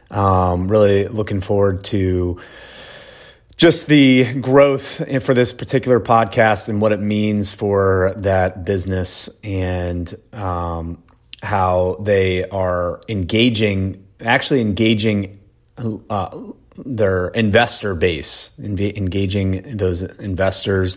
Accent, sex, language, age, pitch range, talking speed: American, male, English, 30-49, 90-115 Hz, 100 wpm